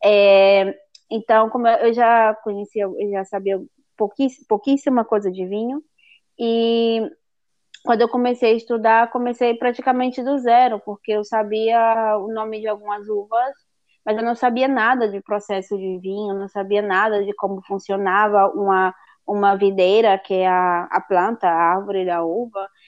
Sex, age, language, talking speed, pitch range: female, 20-39, Portuguese, 155 wpm, 200-250 Hz